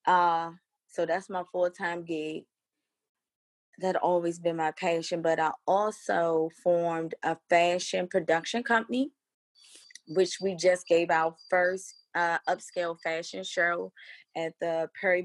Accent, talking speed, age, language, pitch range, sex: American, 125 wpm, 20-39, English, 170-190 Hz, female